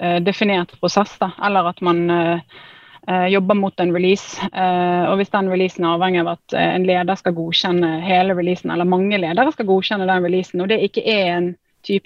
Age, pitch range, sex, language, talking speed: 30-49, 175-215 Hz, female, English, 195 wpm